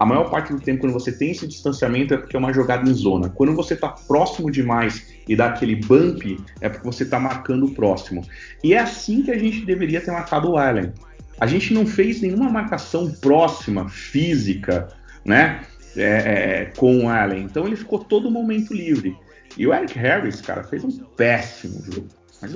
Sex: male